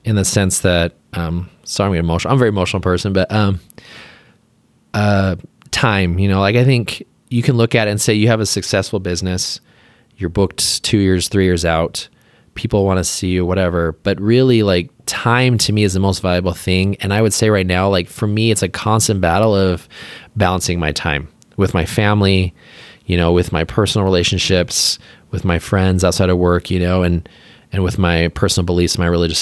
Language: English